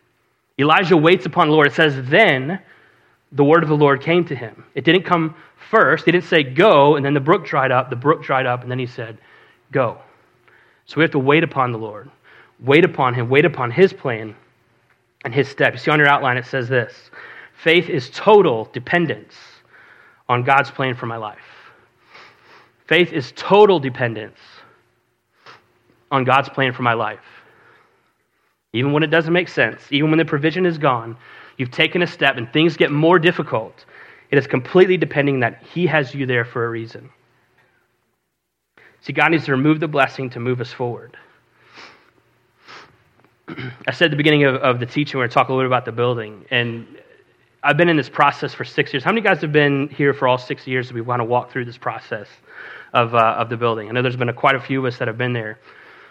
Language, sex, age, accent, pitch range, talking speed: English, male, 30-49, American, 125-160 Hz, 210 wpm